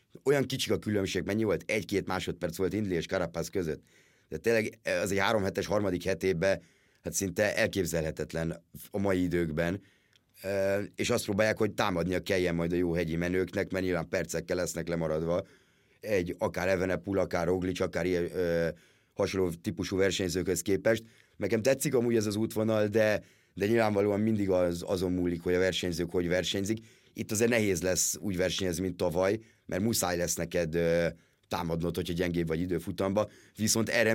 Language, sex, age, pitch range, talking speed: Hungarian, male, 30-49, 90-110 Hz, 160 wpm